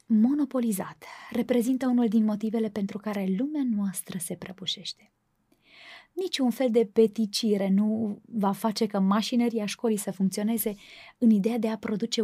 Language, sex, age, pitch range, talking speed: Romanian, female, 20-39, 195-245 Hz, 135 wpm